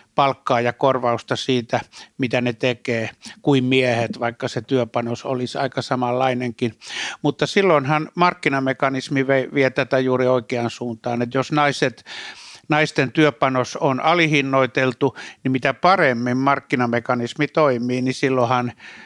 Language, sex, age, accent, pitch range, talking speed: Finnish, male, 60-79, native, 125-145 Hz, 115 wpm